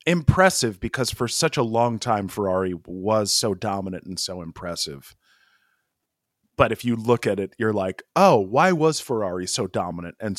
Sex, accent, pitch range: male, American, 105-140 Hz